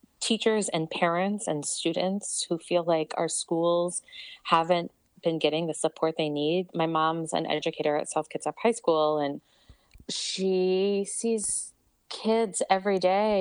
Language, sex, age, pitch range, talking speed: English, female, 20-39, 155-195 Hz, 150 wpm